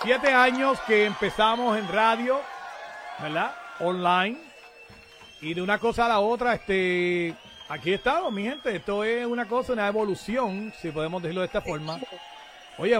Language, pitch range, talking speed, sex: Spanish, 175-220 Hz, 150 wpm, male